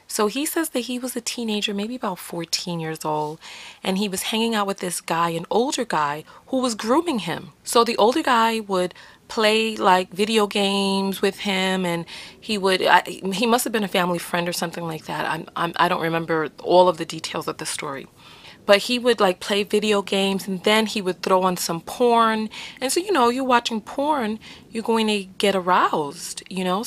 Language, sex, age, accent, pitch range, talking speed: English, female, 30-49, American, 180-225 Hz, 205 wpm